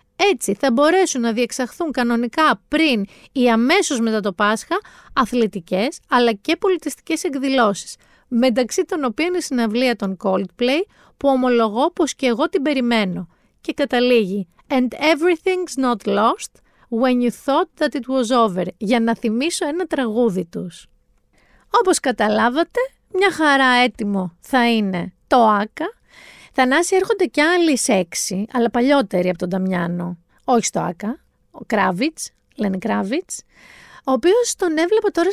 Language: Greek